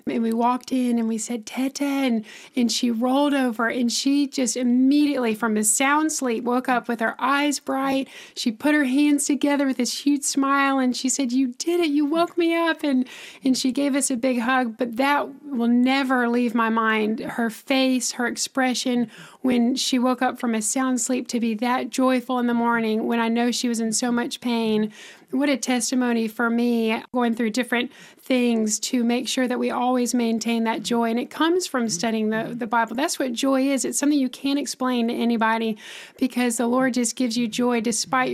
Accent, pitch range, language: American, 230-265 Hz, English